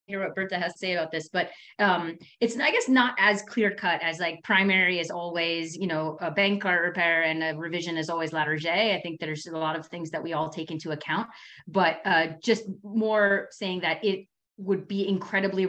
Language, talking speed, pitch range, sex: English, 220 wpm, 165-195 Hz, female